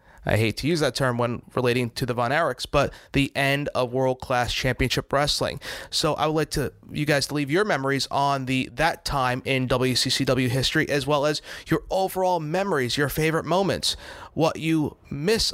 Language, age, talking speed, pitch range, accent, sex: English, 30-49, 190 wpm, 130-165 Hz, American, male